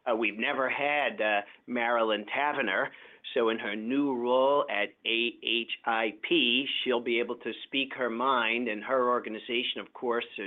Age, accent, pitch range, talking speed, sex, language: 50-69, American, 110-130 Hz, 150 wpm, male, English